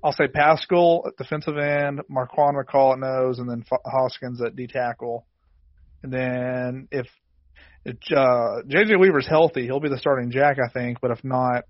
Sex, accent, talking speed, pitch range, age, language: male, American, 180 wpm, 125-135 Hz, 30-49, English